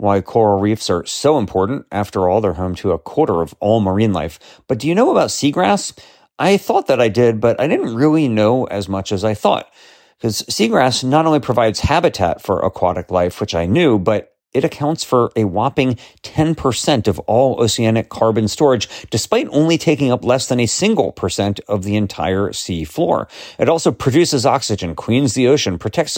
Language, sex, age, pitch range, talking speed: English, male, 40-59, 100-135 Hz, 190 wpm